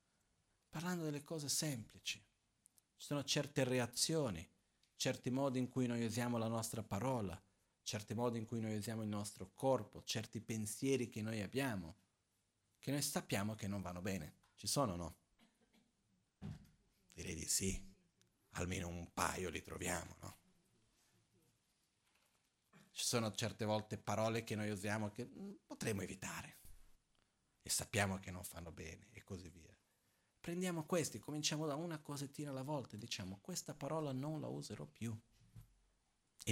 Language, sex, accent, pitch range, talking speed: Italian, male, native, 105-155 Hz, 140 wpm